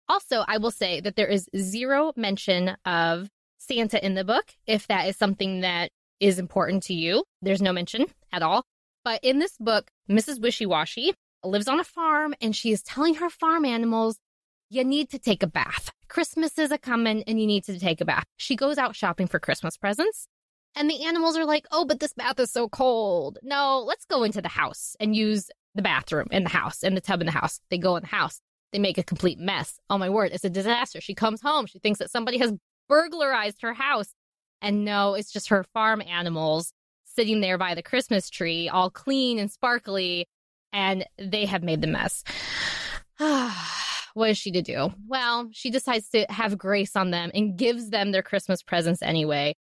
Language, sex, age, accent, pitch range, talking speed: English, female, 20-39, American, 190-260 Hz, 205 wpm